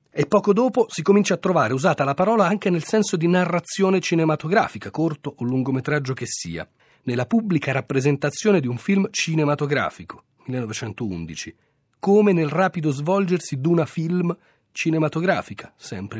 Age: 40-59